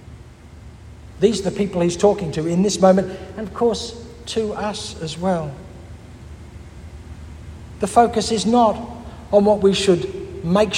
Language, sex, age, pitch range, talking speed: English, male, 60-79, 155-200 Hz, 145 wpm